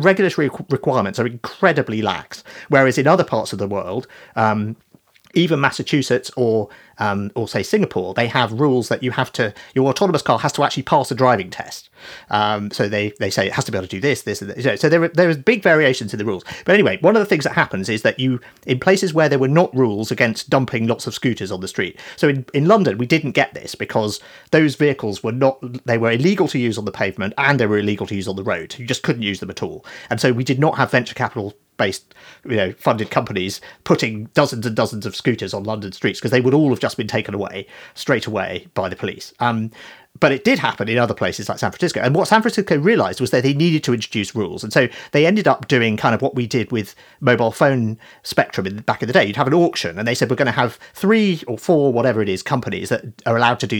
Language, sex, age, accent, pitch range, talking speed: English, male, 40-59, British, 110-145 Hz, 255 wpm